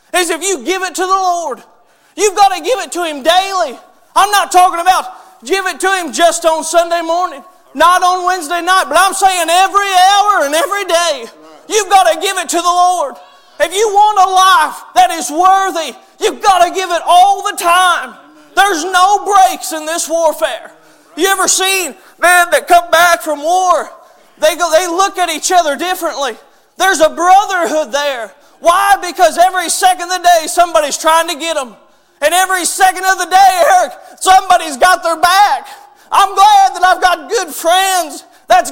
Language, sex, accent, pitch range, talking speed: English, male, American, 345-385 Hz, 190 wpm